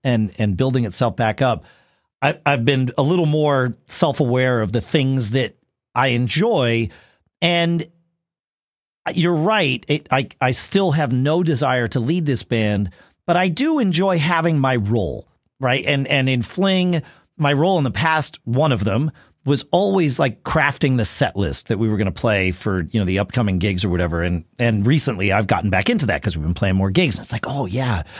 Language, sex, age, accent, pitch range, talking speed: English, male, 40-59, American, 115-175 Hz, 200 wpm